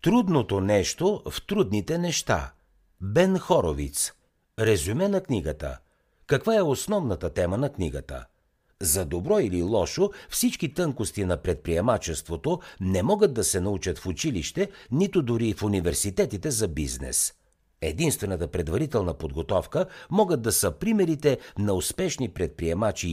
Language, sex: Bulgarian, male